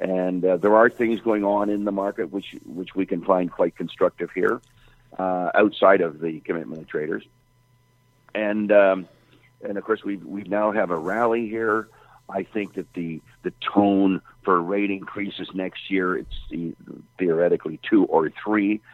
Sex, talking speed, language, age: male, 165 wpm, English, 50-69